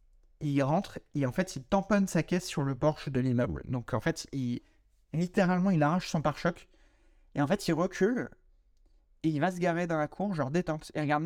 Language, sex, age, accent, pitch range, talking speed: French, male, 30-49, French, 135-165 Hz, 215 wpm